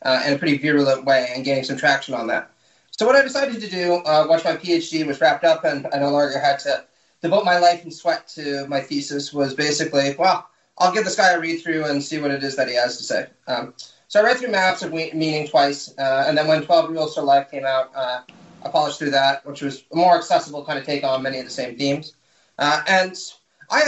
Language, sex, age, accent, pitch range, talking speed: English, male, 30-49, American, 140-180 Hz, 250 wpm